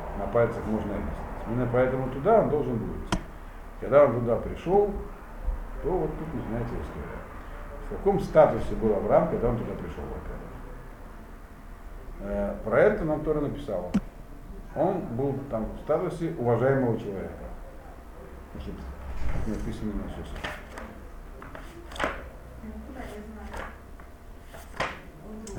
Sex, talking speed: male, 110 wpm